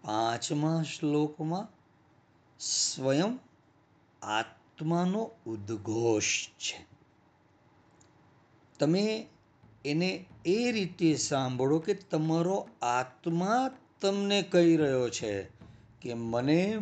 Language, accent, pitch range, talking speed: Gujarati, native, 120-175 Hz, 55 wpm